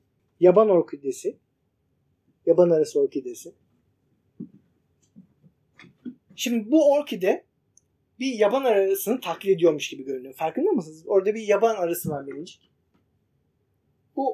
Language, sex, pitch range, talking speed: Turkish, male, 170-275 Hz, 95 wpm